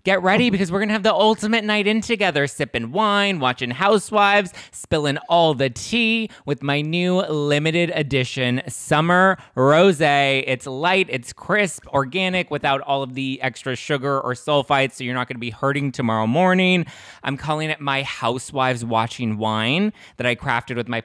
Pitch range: 125-155 Hz